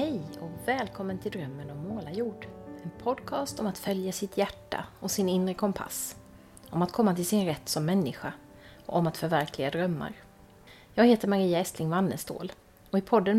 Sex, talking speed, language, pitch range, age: female, 175 wpm, Swedish, 165-215 Hz, 30-49